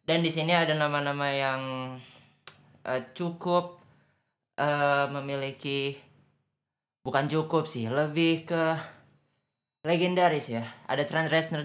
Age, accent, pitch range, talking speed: 20-39, native, 110-135 Hz, 105 wpm